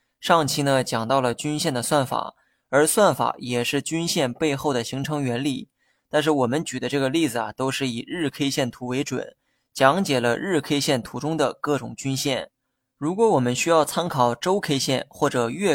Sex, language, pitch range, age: male, Chinese, 130-155 Hz, 20-39